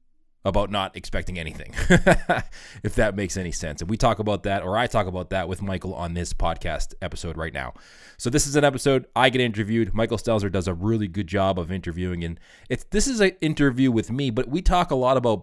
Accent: American